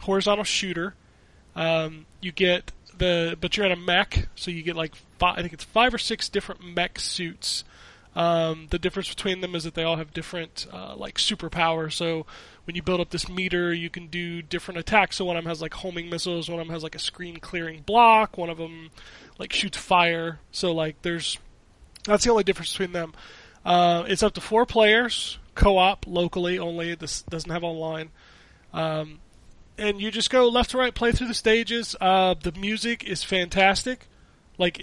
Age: 20-39